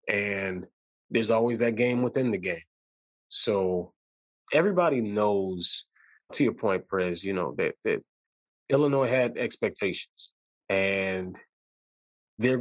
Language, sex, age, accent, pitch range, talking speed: English, male, 20-39, American, 100-130 Hz, 115 wpm